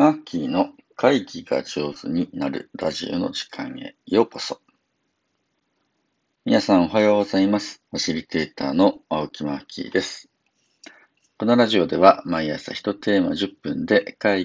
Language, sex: Japanese, male